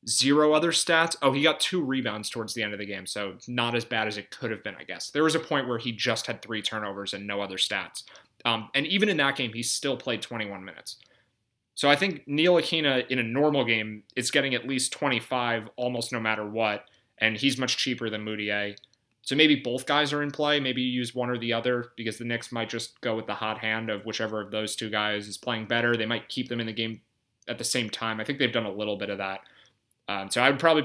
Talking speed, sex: 255 wpm, male